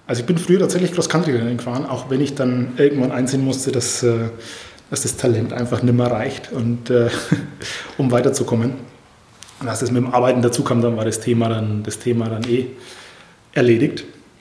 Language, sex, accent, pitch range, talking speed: German, male, German, 120-140 Hz, 185 wpm